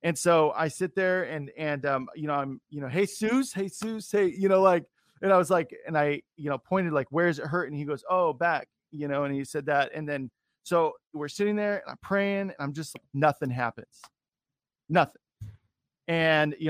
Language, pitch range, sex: English, 145-180 Hz, male